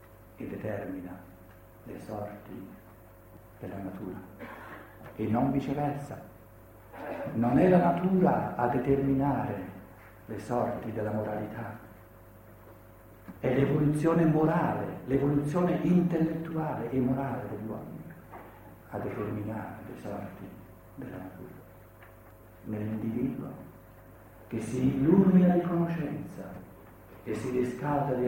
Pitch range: 110-170 Hz